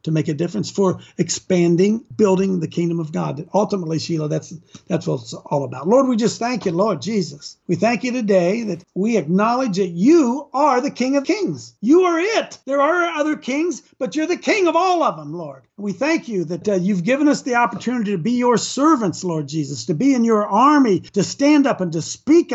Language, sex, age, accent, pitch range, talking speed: English, male, 50-69, American, 165-225 Hz, 220 wpm